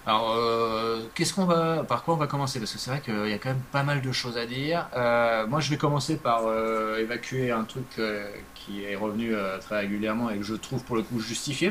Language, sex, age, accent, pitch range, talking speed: French, male, 20-39, French, 105-130 Hz, 255 wpm